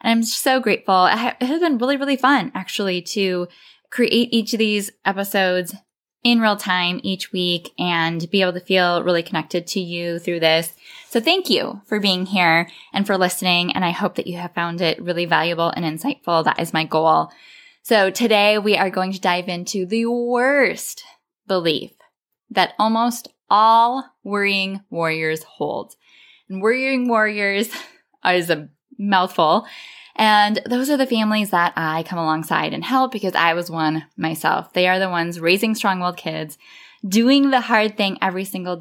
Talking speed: 170 wpm